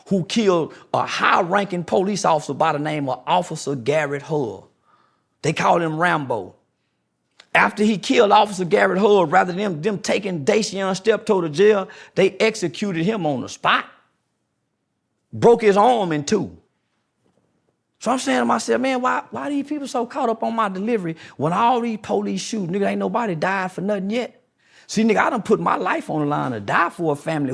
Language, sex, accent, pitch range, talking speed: English, male, American, 175-225 Hz, 190 wpm